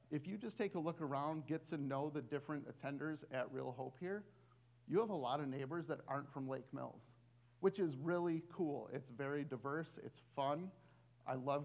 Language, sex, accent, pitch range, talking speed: English, male, American, 125-155 Hz, 200 wpm